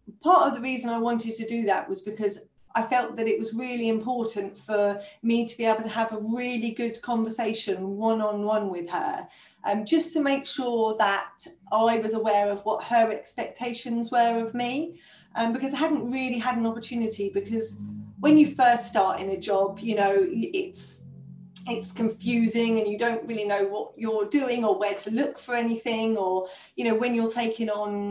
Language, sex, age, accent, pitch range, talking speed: English, female, 30-49, British, 210-235 Hz, 190 wpm